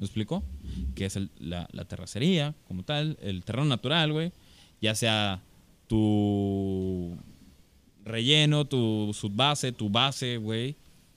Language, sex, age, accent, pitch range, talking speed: Spanish, male, 20-39, Mexican, 100-155 Hz, 125 wpm